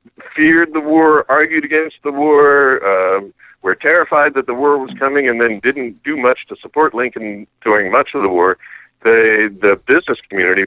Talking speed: 180 wpm